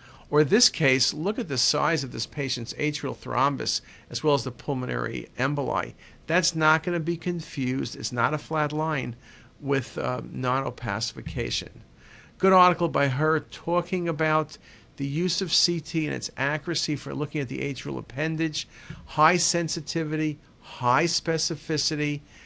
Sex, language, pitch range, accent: male, English, 135-165 Hz, American